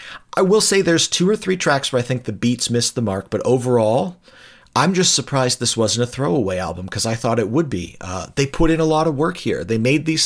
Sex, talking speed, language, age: male, 255 wpm, English, 40-59